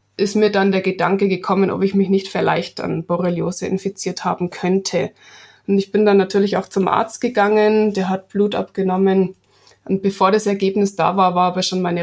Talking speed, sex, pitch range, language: 195 wpm, female, 175-200 Hz, German